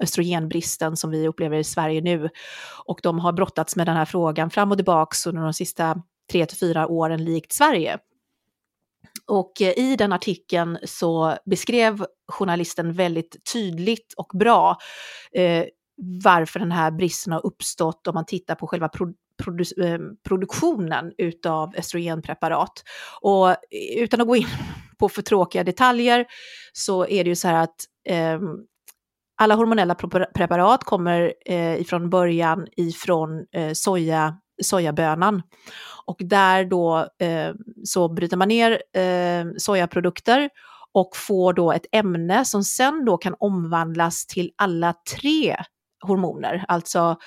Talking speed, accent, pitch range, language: 135 wpm, native, 165-200 Hz, Swedish